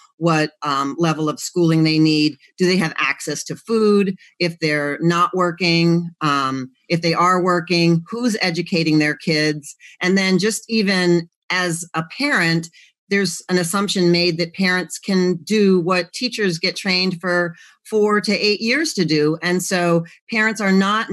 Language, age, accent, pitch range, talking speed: English, 40-59, American, 150-180 Hz, 160 wpm